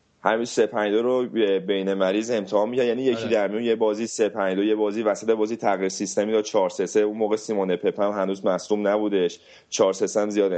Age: 30-49